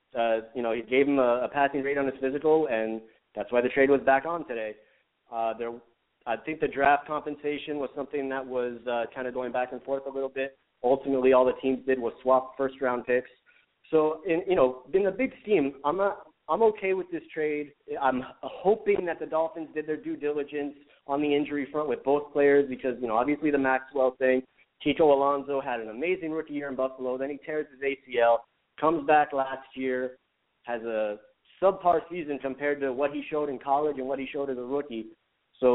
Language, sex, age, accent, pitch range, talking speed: English, male, 20-39, American, 125-150 Hz, 215 wpm